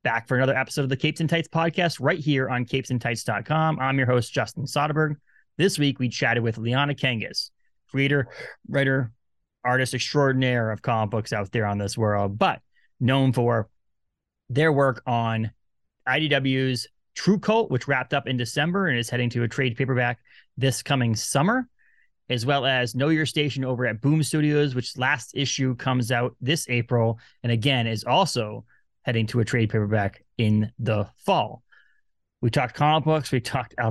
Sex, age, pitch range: male, 30-49, 115-140 Hz